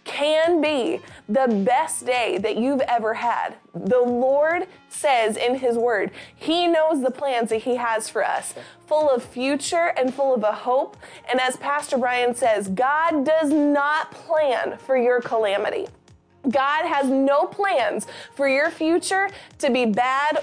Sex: female